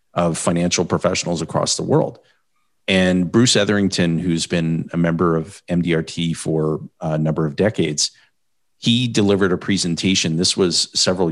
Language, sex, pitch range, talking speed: English, male, 85-100 Hz, 145 wpm